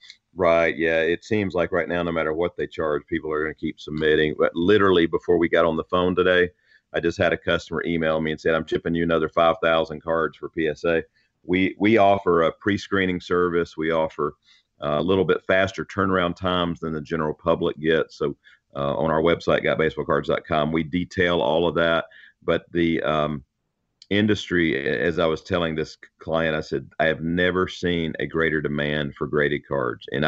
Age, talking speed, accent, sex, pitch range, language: 40-59, 195 wpm, American, male, 80-90 Hz, English